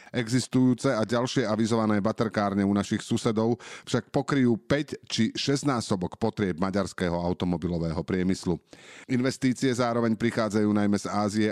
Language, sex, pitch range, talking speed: Slovak, male, 100-125 Hz, 120 wpm